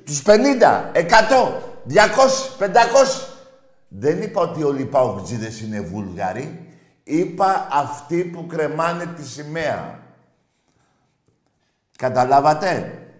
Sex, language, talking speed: male, Greek, 90 wpm